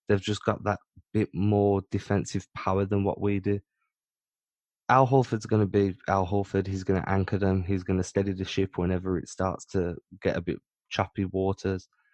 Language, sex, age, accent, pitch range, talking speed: English, male, 20-39, British, 95-115 Hz, 190 wpm